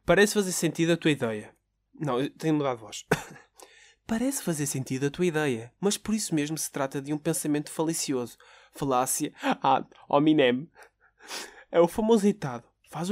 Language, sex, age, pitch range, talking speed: Portuguese, male, 20-39, 125-165 Hz, 160 wpm